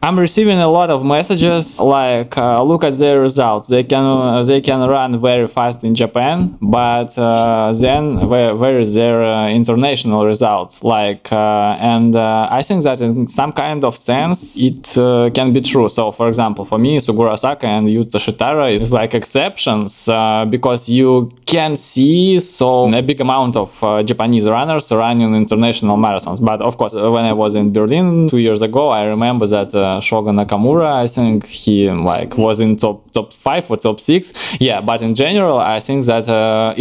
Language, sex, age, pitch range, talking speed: Russian, male, 20-39, 110-130 Hz, 185 wpm